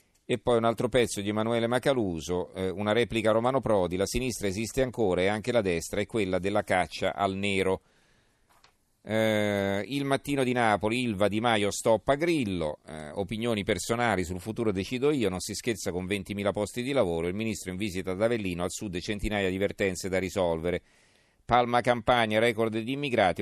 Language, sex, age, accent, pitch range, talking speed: Italian, male, 40-59, native, 95-115 Hz, 170 wpm